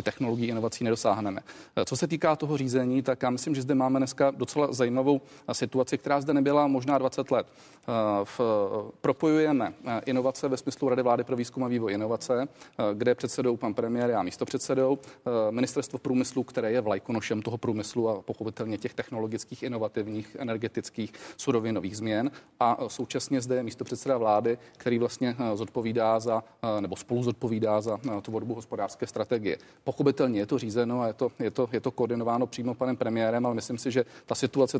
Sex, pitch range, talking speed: male, 115-130 Hz, 160 wpm